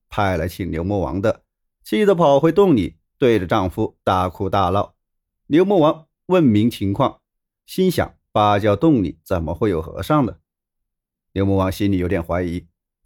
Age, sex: 30-49, male